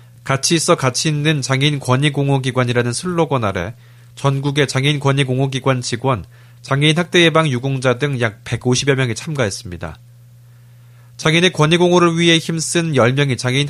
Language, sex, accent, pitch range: Korean, male, native, 120-155 Hz